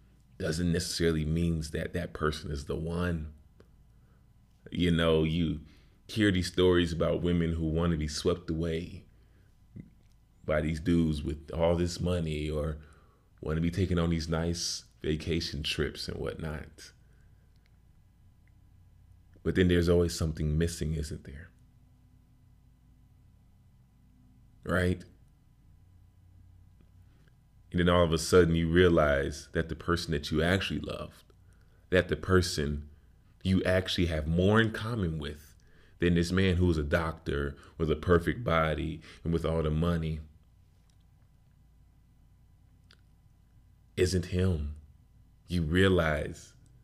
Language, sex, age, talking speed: English, male, 30-49, 120 wpm